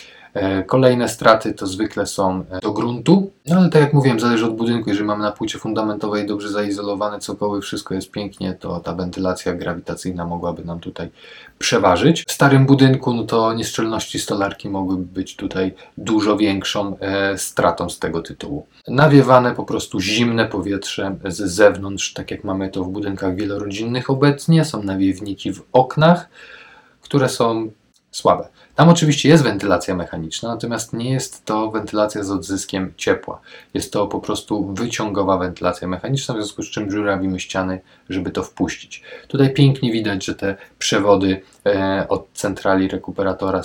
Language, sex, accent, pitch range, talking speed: Polish, male, native, 95-115 Hz, 150 wpm